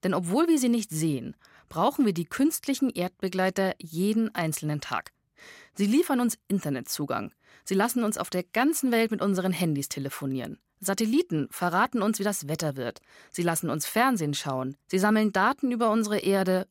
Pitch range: 155-235 Hz